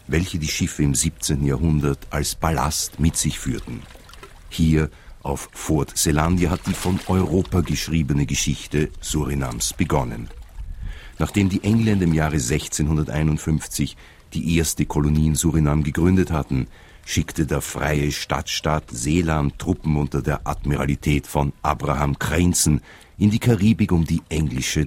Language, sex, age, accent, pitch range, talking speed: English, male, 50-69, German, 75-90 Hz, 130 wpm